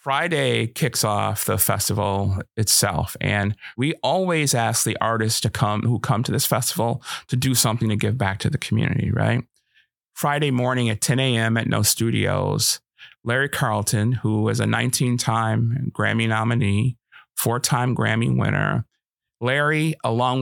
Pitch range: 110-130 Hz